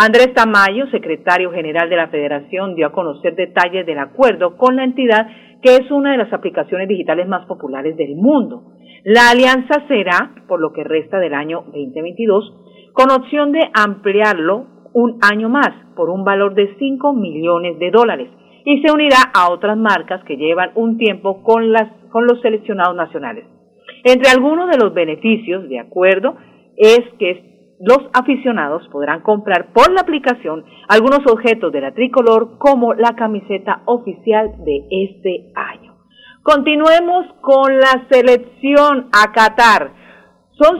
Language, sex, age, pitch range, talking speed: Spanish, female, 40-59, 185-255 Hz, 155 wpm